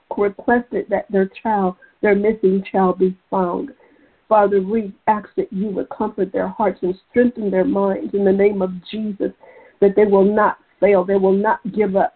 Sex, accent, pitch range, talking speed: female, American, 190-230 Hz, 185 wpm